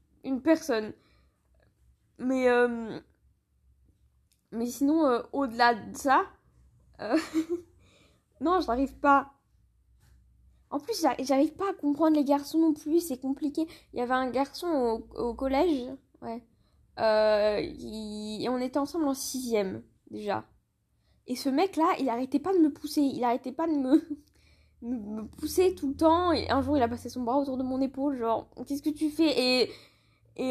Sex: female